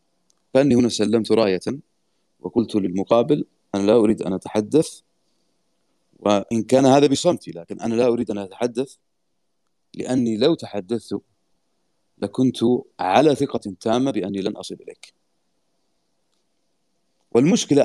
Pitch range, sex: 105-140 Hz, male